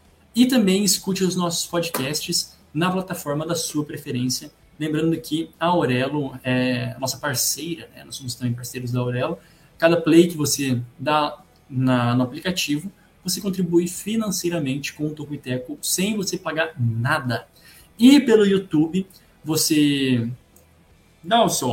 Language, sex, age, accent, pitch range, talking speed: Portuguese, male, 20-39, Brazilian, 125-175 Hz, 140 wpm